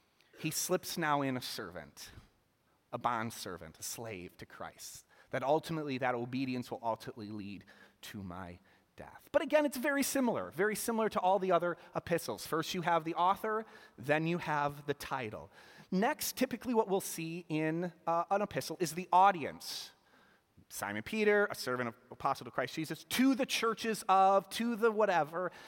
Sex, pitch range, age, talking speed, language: male, 145-210 Hz, 30-49, 170 wpm, English